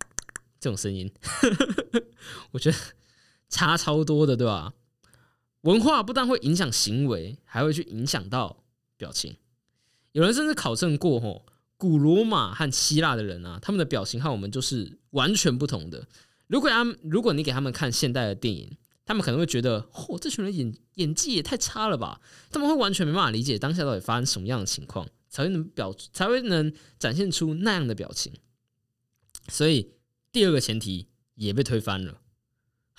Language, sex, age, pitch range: Chinese, male, 20-39, 115-170 Hz